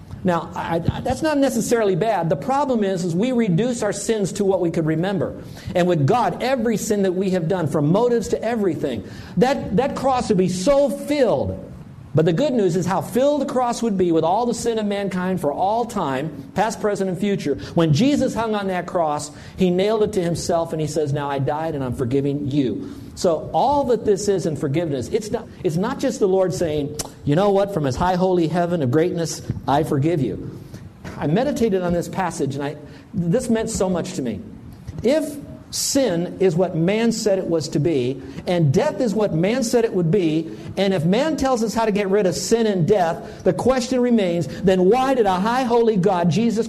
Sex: male